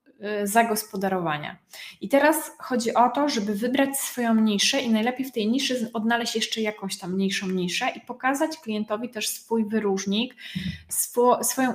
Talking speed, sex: 150 wpm, female